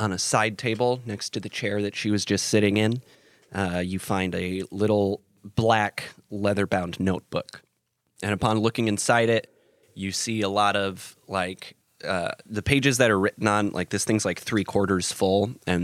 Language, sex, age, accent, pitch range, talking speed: English, male, 20-39, American, 95-110 Hz, 180 wpm